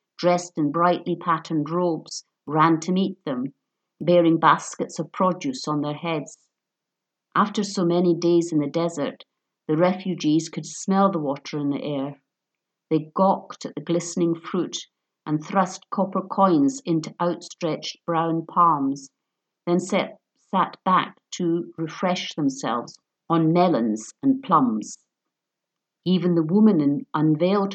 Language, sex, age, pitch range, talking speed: English, female, 50-69, 155-190 Hz, 130 wpm